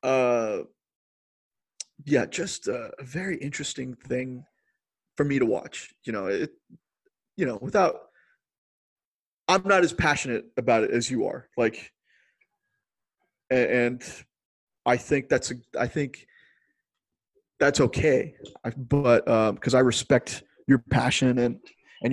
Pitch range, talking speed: 120-145 Hz, 125 wpm